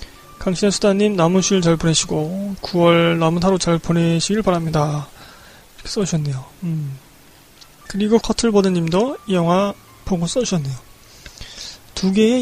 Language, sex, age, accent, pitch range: Korean, male, 20-39, native, 165-210 Hz